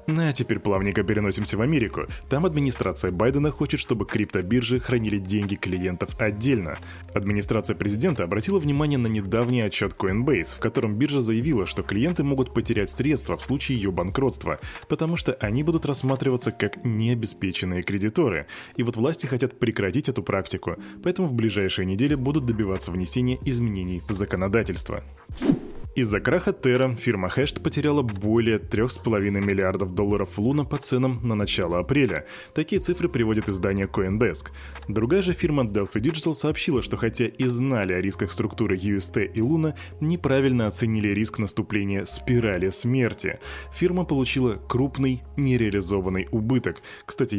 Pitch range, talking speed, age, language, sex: 100-130 Hz, 140 wpm, 20-39, Russian, male